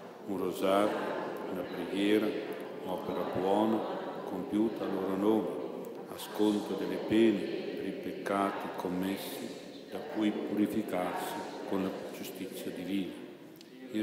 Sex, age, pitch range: male, 60-79, 100-110 Hz